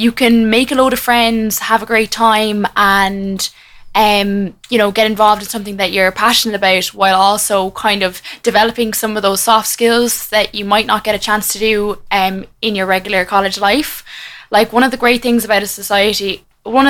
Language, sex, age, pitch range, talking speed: English, female, 10-29, 195-230 Hz, 205 wpm